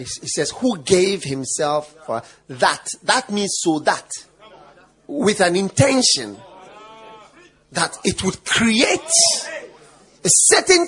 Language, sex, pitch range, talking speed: English, male, 170-260 Hz, 110 wpm